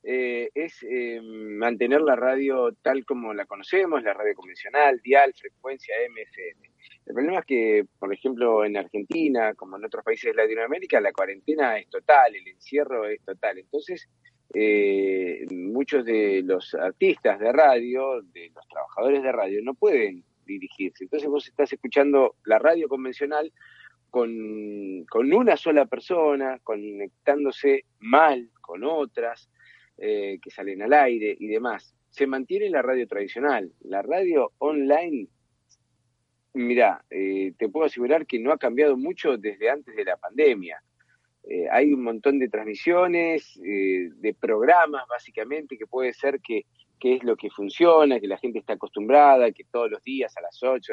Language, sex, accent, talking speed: Spanish, male, Argentinian, 155 wpm